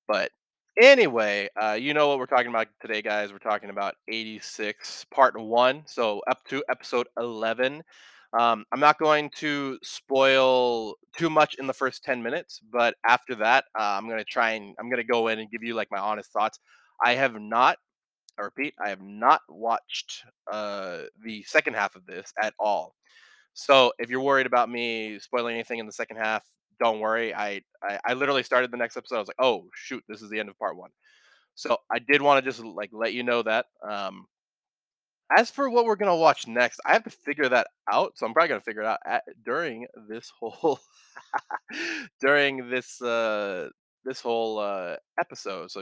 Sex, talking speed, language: male, 200 wpm, English